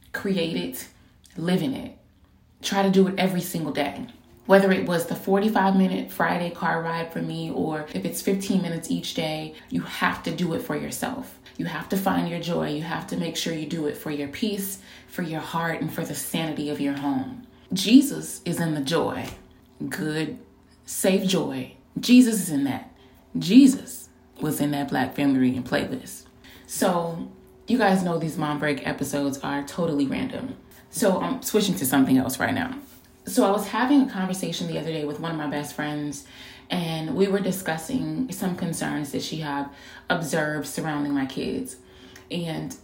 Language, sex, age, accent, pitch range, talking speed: English, female, 20-39, American, 145-195 Hz, 185 wpm